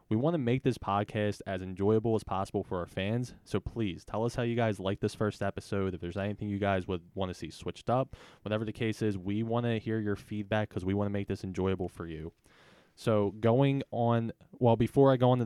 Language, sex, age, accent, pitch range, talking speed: English, male, 20-39, American, 100-115 Hz, 240 wpm